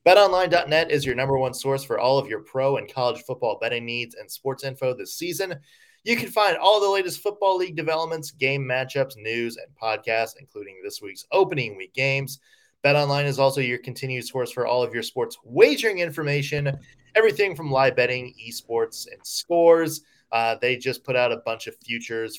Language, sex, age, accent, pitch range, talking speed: English, male, 20-39, American, 125-175 Hz, 190 wpm